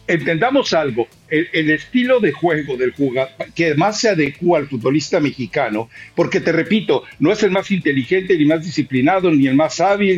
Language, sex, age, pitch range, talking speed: Spanish, male, 60-79, 155-215 Hz, 185 wpm